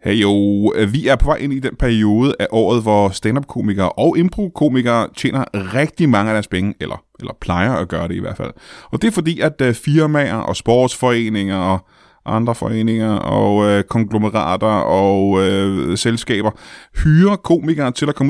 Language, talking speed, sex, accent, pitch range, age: Danish, 175 wpm, male, native, 105-140 Hz, 20-39